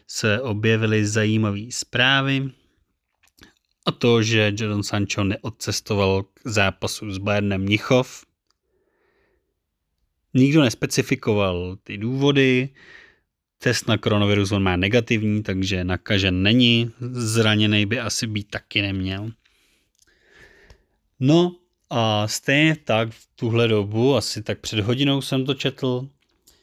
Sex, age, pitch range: male, 30-49, 105-125 Hz